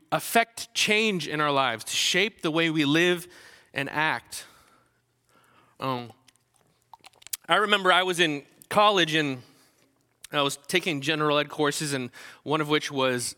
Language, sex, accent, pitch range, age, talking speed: English, male, American, 140-180 Hz, 20-39, 145 wpm